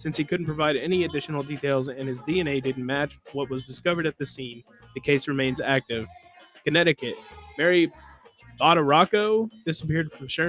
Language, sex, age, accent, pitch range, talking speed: English, male, 20-39, American, 135-165 Hz, 160 wpm